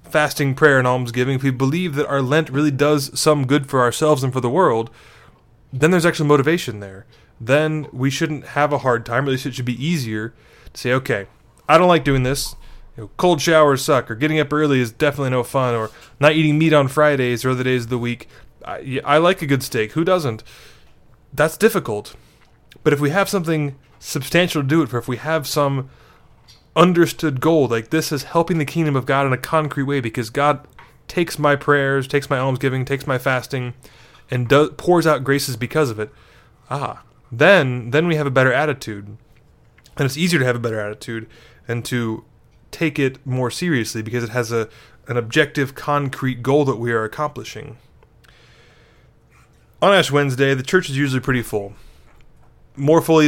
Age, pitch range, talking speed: 20-39, 125-150 Hz, 195 wpm